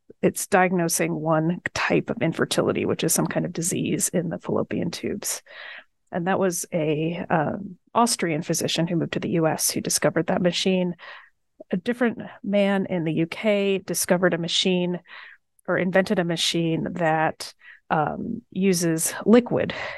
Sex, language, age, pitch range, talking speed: female, English, 30-49, 170-205 Hz, 145 wpm